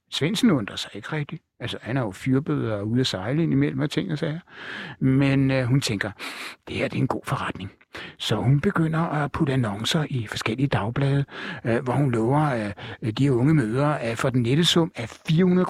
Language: Danish